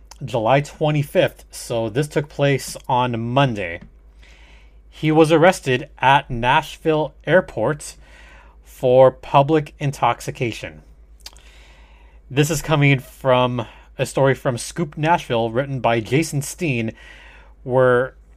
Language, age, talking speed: English, 30-49, 100 wpm